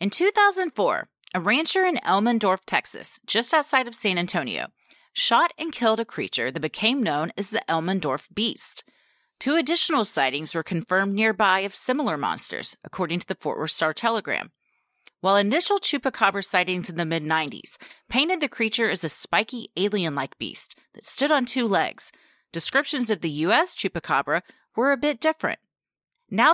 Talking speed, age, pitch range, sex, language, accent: 155 wpm, 30-49, 180-275 Hz, female, English, American